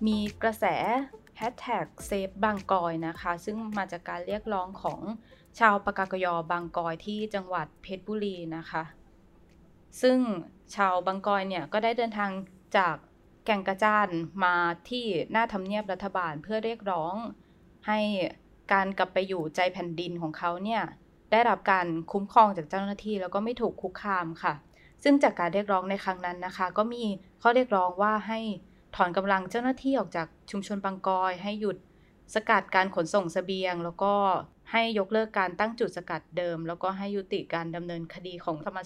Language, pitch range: Thai, 180-215 Hz